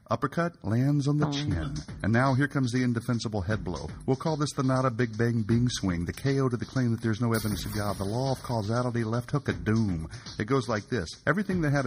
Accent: American